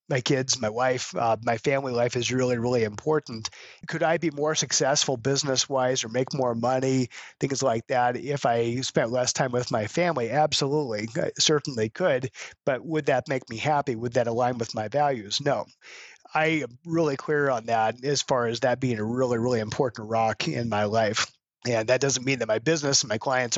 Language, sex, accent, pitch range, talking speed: English, male, American, 120-145 Hz, 200 wpm